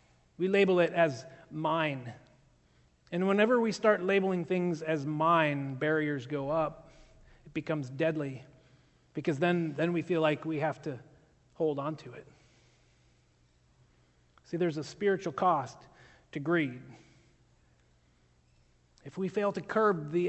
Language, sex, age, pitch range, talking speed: English, male, 30-49, 135-185 Hz, 135 wpm